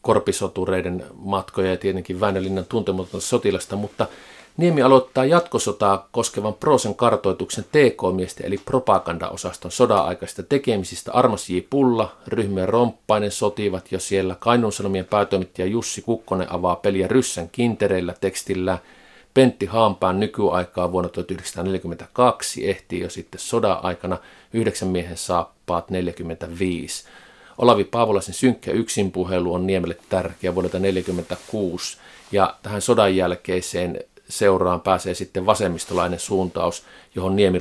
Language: Finnish